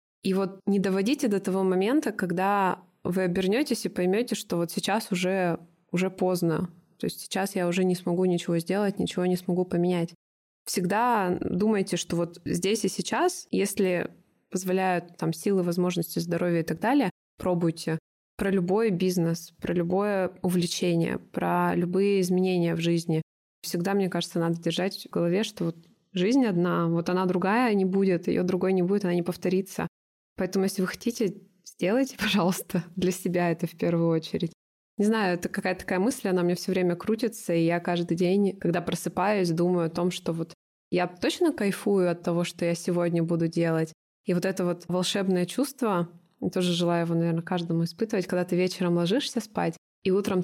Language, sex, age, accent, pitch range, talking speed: Russian, female, 20-39, native, 170-195 Hz, 175 wpm